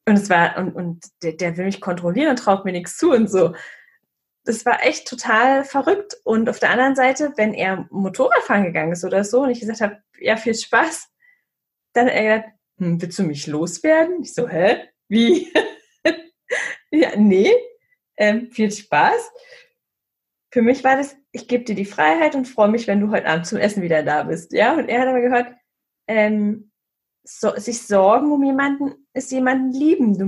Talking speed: 190 wpm